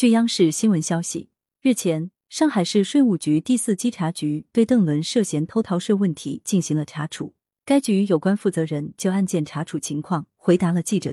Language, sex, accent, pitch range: Chinese, female, native, 160-230 Hz